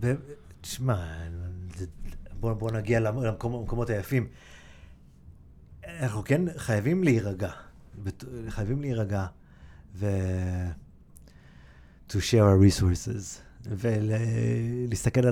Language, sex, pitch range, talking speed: Hebrew, male, 90-125 Hz, 70 wpm